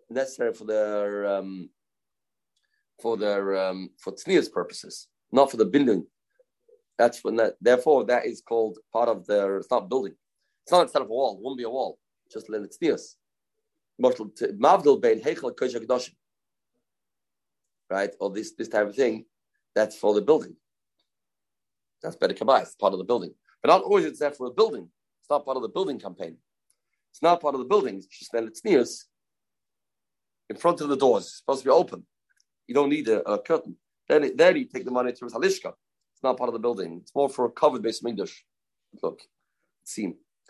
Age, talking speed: 30-49, 185 wpm